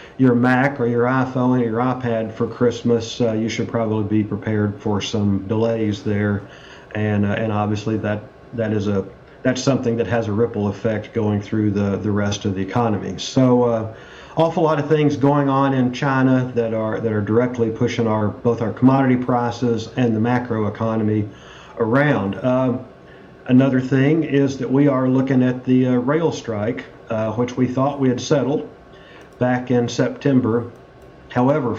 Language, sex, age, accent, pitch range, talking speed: English, male, 40-59, American, 115-130 Hz, 175 wpm